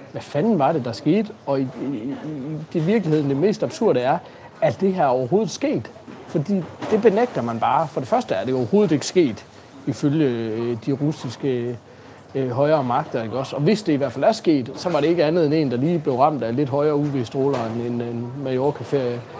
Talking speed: 195 wpm